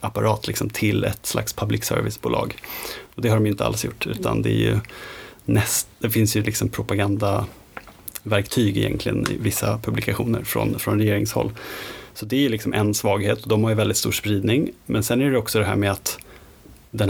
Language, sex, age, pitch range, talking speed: Swedish, male, 30-49, 105-120 Hz, 195 wpm